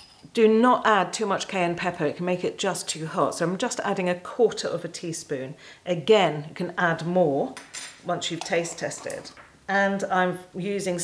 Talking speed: 190 wpm